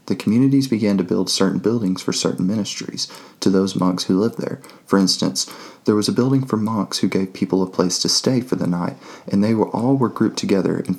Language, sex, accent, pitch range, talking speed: English, male, American, 90-110 Hz, 230 wpm